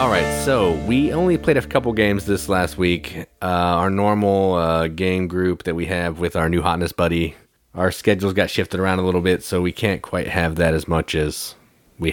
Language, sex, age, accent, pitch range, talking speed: English, male, 30-49, American, 85-100 Hz, 215 wpm